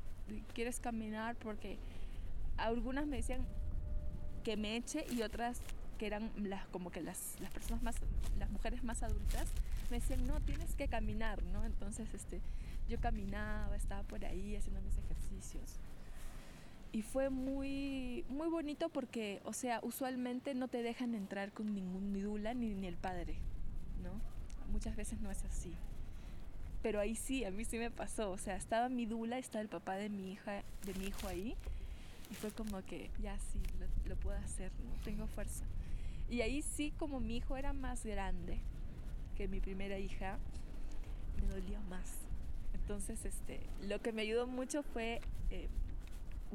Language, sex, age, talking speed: Spanish, female, 20-39, 165 wpm